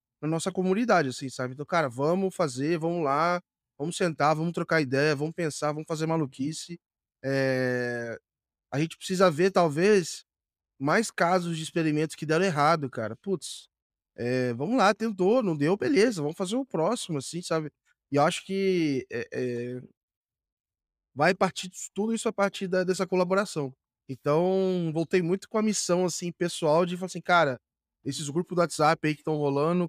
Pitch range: 140-175 Hz